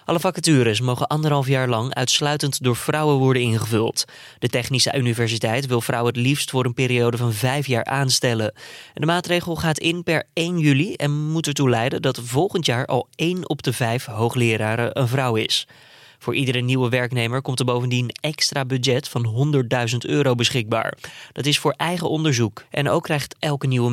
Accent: Dutch